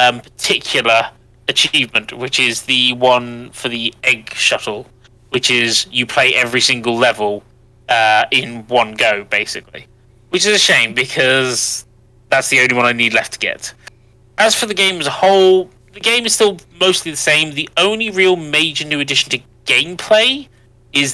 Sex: male